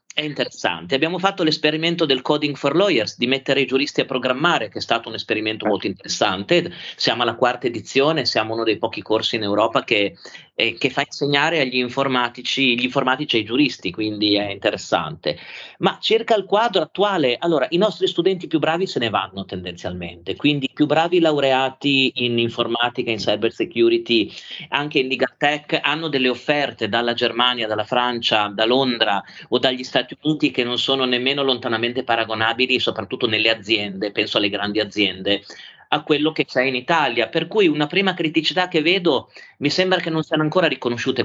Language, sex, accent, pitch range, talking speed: Italian, male, native, 115-150 Hz, 175 wpm